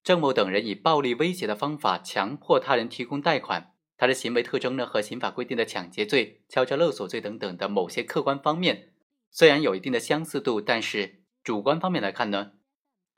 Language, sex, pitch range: Chinese, male, 125-180 Hz